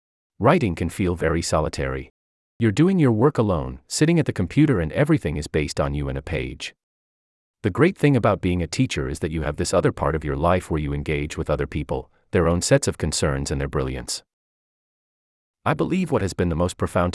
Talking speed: 215 wpm